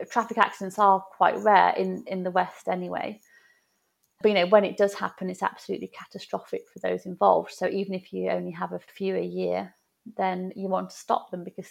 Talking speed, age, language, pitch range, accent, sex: 205 wpm, 30-49, English, 185-205 Hz, British, female